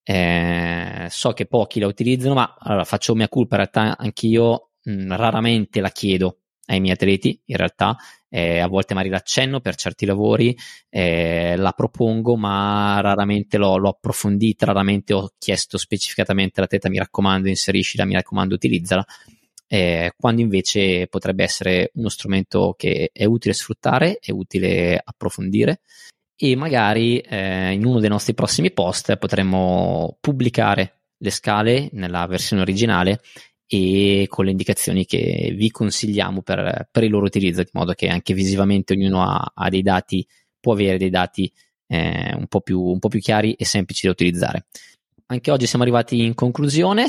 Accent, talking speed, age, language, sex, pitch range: native, 160 wpm, 20-39, Italian, male, 95-115 Hz